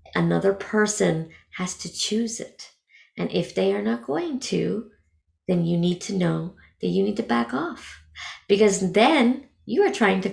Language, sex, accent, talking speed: English, female, American, 175 wpm